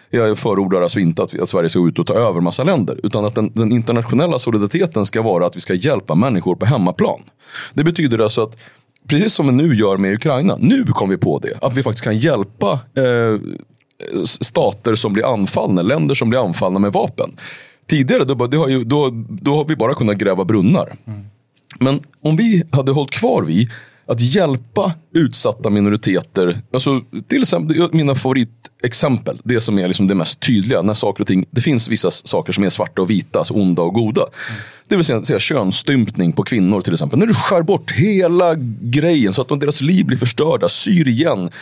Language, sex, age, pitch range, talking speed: Swedish, male, 30-49, 110-155 Hz, 185 wpm